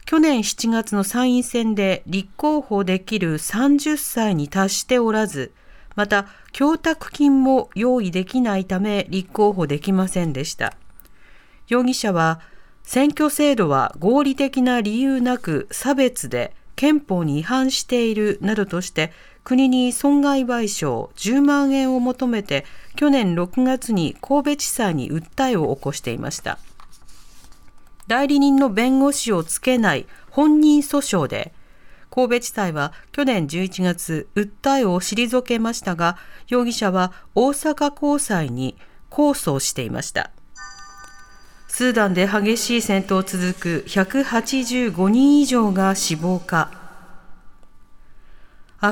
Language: Japanese